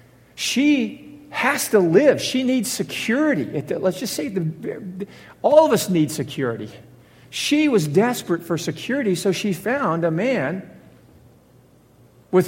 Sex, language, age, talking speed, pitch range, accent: male, English, 50-69, 125 wpm, 150-220 Hz, American